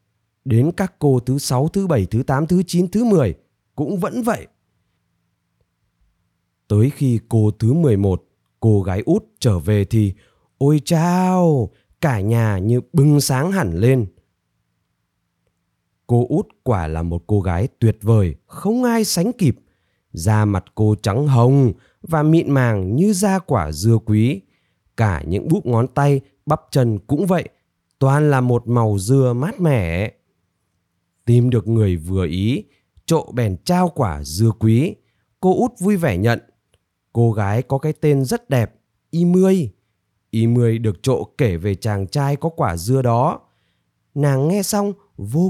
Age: 20-39